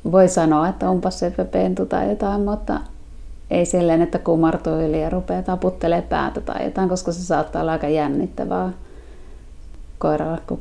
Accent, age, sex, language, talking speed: native, 30-49, female, Finnish, 160 wpm